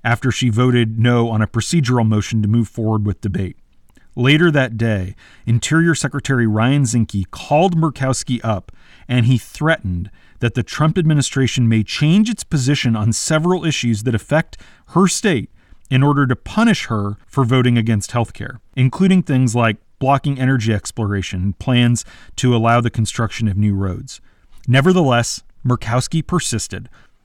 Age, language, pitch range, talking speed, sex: 40-59, English, 110-140 Hz, 150 wpm, male